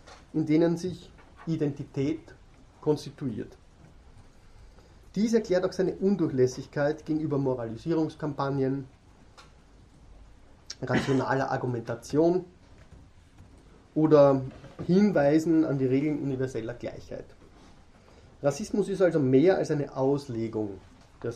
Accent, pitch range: German, 125-155 Hz